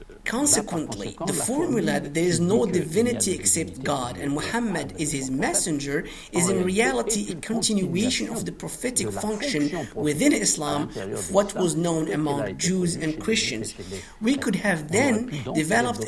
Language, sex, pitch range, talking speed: English, male, 150-185 Hz, 145 wpm